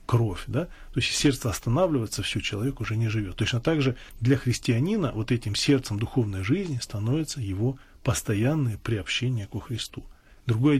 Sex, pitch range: male, 100-125 Hz